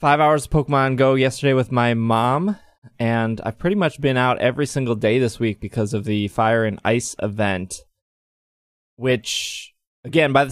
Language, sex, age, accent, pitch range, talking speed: English, male, 20-39, American, 110-130 Hz, 175 wpm